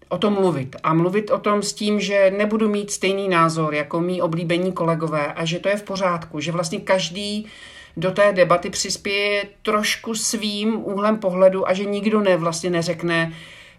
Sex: male